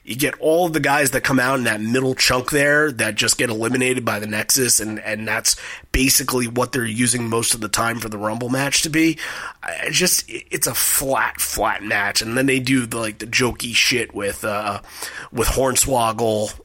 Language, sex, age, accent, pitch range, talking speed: English, male, 30-49, American, 110-145 Hz, 205 wpm